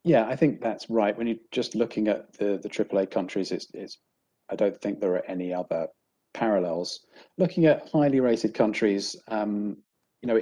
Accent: British